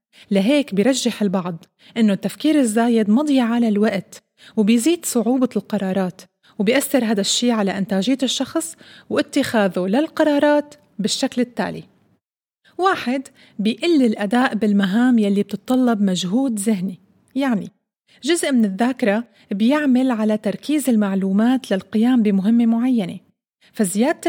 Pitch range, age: 205-255 Hz, 30-49